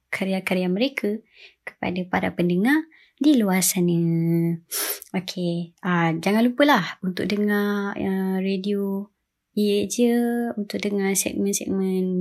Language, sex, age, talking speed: Malay, male, 20-39, 90 wpm